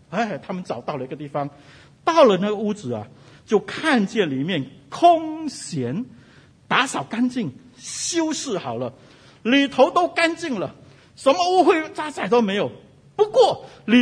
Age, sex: 50-69, male